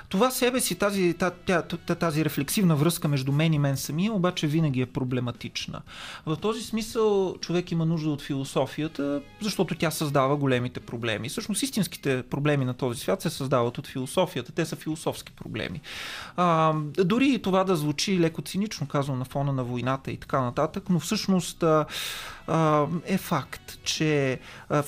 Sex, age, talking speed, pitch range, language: male, 30-49, 160 wpm, 135-175 Hz, Bulgarian